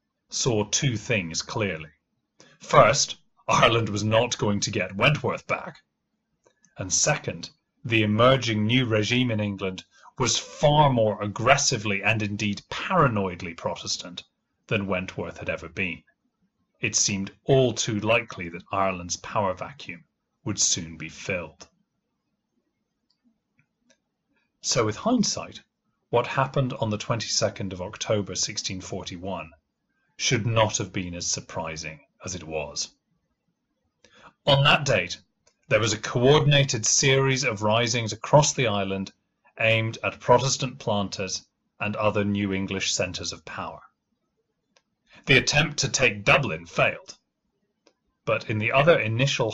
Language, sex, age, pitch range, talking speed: English, male, 30-49, 100-135 Hz, 125 wpm